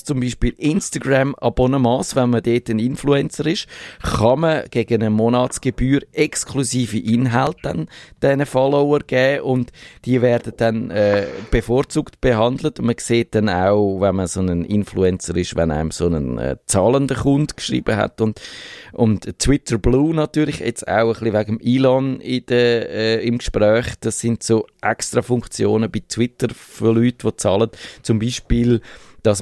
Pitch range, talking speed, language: 100-125 Hz, 155 wpm, German